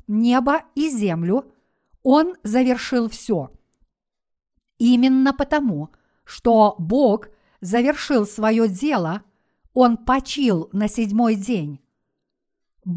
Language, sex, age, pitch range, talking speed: Russian, female, 50-69, 215-270 Hz, 85 wpm